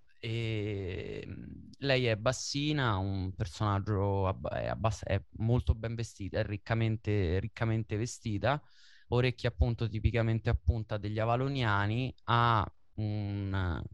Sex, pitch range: male, 100-115 Hz